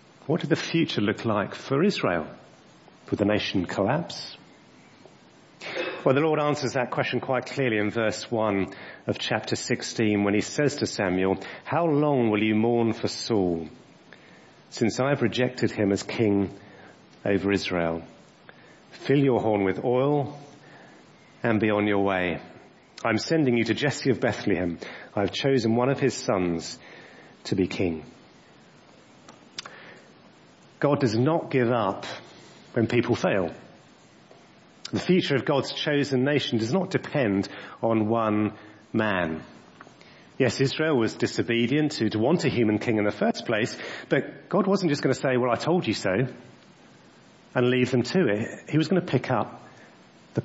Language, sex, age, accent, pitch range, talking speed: English, male, 40-59, British, 105-140 Hz, 160 wpm